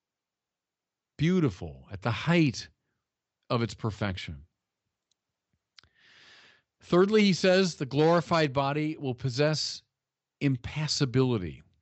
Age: 50-69